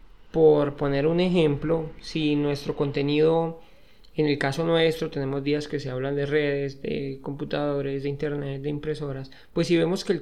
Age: 20-39